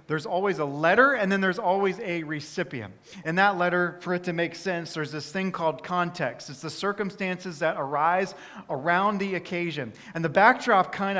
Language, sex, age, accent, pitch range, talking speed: English, male, 40-59, American, 150-190 Hz, 190 wpm